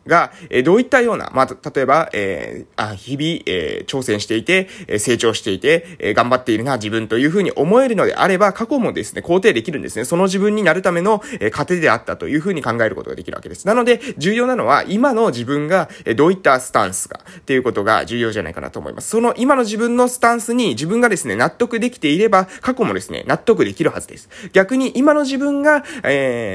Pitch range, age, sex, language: 155-235 Hz, 20-39, male, Japanese